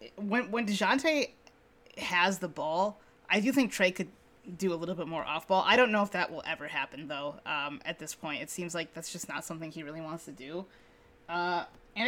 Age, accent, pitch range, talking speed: 20-39, American, 165-220 Hz, 225 wpm